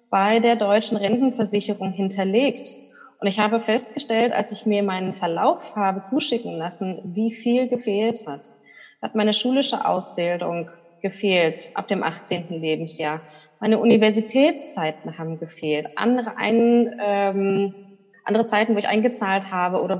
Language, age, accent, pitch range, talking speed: German, 20-39, German, 195-230 Hz, 130 wpm